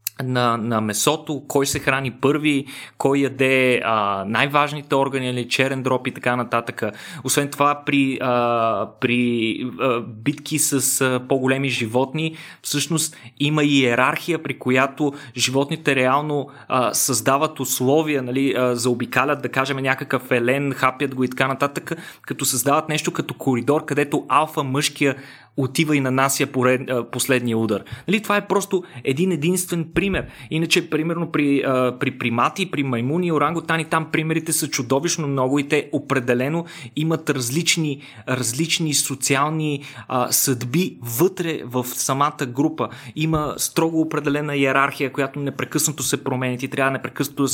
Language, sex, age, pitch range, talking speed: Bulgarian, male, 20-39, 125-150 Hz, 140 wpm